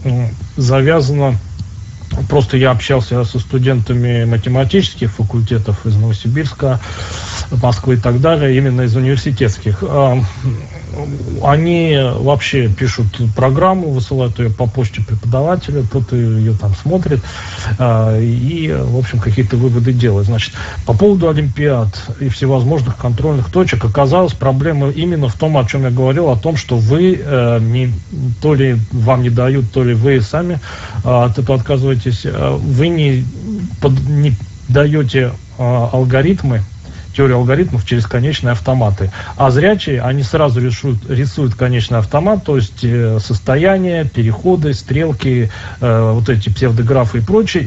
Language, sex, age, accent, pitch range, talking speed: Russian, male, 40-59, native, 115-140 Hz, 125 wpm